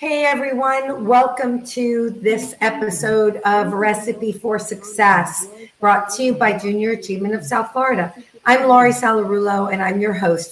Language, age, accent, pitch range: English, 50-69, American, 190-225 Hz